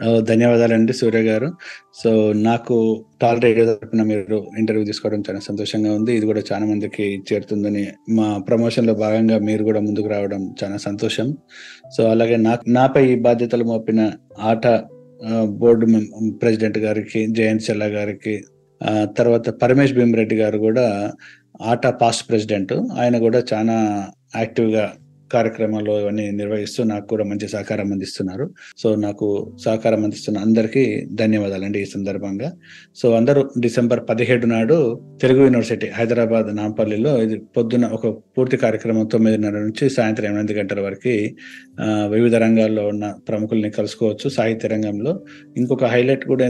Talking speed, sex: 130 wpm, male